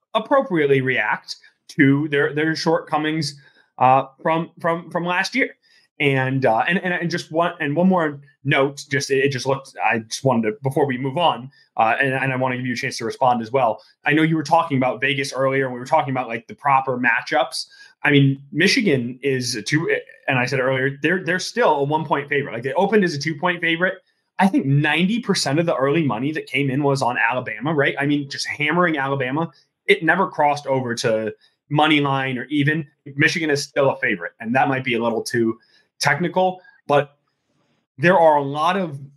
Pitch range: 130-155 Hz